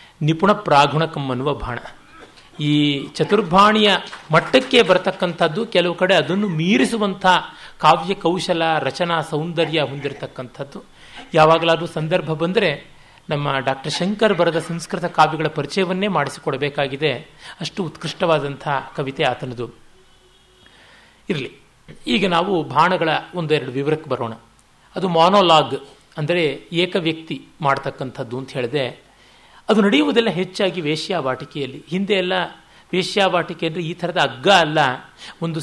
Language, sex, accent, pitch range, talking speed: Kannada, male, native, 150-190 Hz, 100 wpm